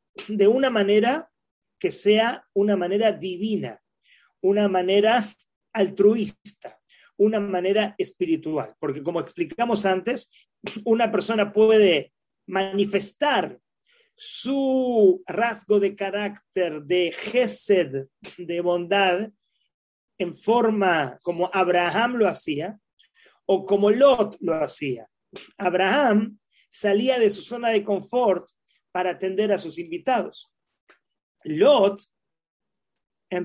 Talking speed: 100 wpm